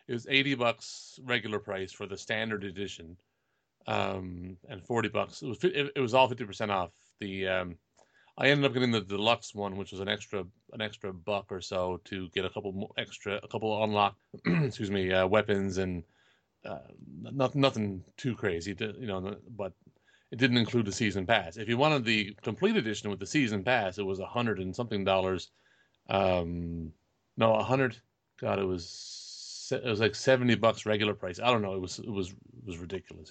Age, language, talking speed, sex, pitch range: 30-49, English, 200 wpm, male, 100-125 Hz